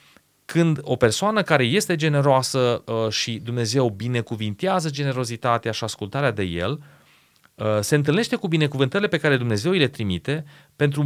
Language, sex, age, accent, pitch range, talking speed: Romanian, male, 30-49, native, 115-150 Hz, 135 wpm